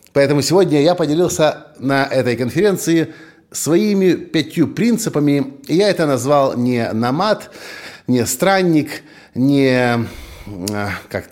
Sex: male